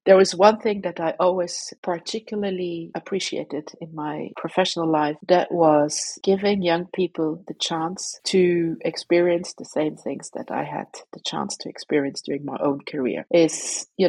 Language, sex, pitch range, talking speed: English, female, 160-195 Hz, 160 wpm